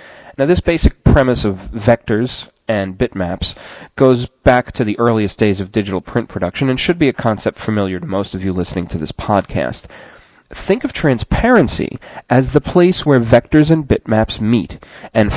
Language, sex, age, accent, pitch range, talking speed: English, male, 30-49, American, 100-140 Hz, 170 wpm